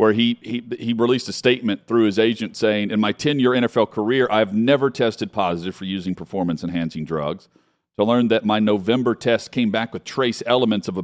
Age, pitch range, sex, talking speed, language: 40-59, 95-120 Hz, male, 205 wpm, English